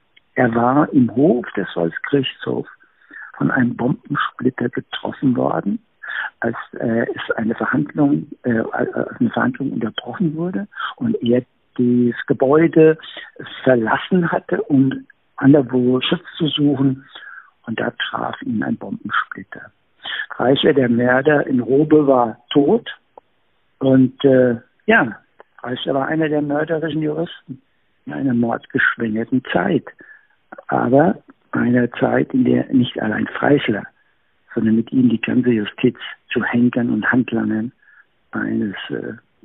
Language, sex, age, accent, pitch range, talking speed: German, male, 60-79, German, 120-150 Hz, 120 wpm